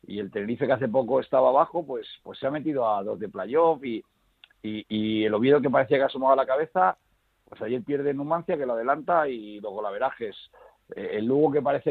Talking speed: 215 wpm